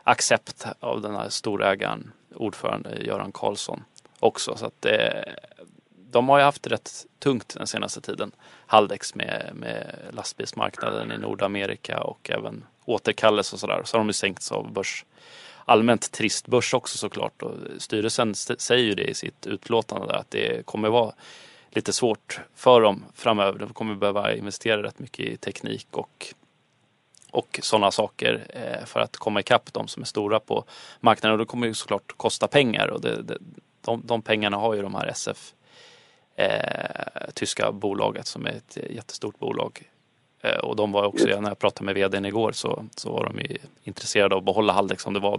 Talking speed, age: 175 wpm, 20-39